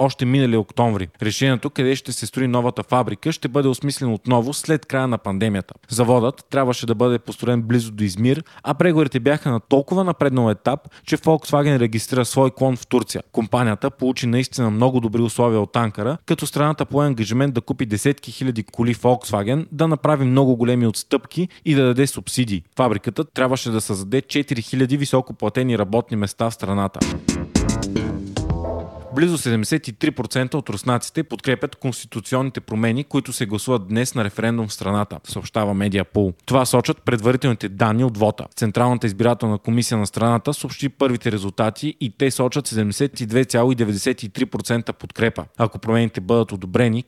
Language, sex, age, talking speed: Bulgarian, male, 20-39, 150 wpm